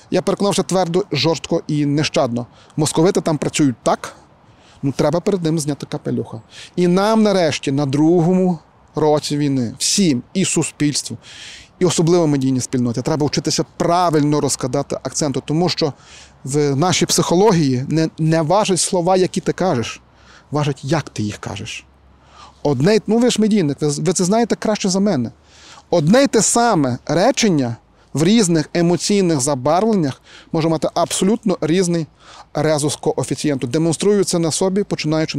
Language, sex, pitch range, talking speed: Ukrainian, male, 145-180 Hz, 145 wpm